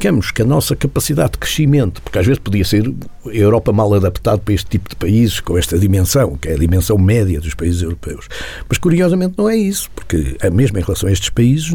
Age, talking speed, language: 50-69, 220 wpm, Portuguese